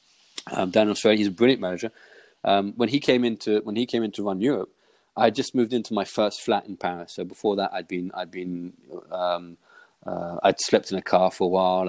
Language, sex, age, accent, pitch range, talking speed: English, male, 20-39, British, 95-120 Hz, 220 wpm